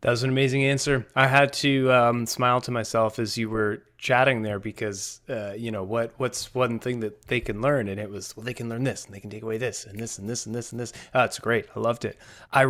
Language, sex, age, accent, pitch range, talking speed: English, male, 30-49, American, 110-130 Hz, 275 wpm